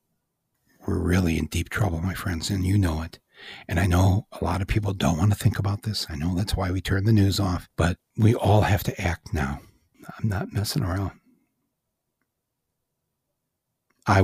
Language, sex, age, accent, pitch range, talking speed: English, male, 60-79, American, 100-140 Hz, 190 wpm